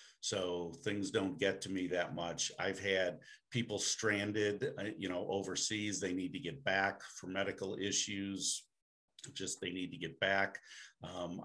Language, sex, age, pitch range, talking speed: English, male, 50-69, 90-105 Hz, 155 wpm